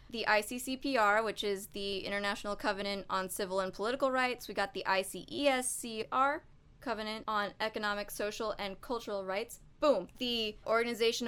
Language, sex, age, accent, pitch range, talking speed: English, female, 20-39, American, 200-250 Hz, 140 wpm